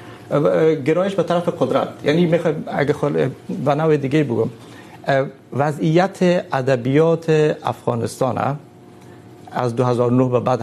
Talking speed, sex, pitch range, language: 95 wpm, male, 120-150 Hz, Urdu